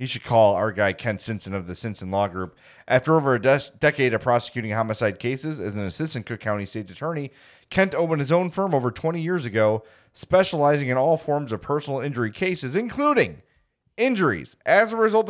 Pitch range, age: 110-155 Hz, 30-49